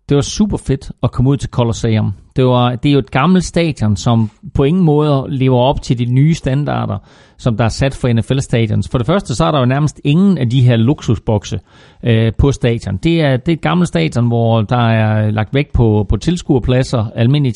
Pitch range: 110-135 Hz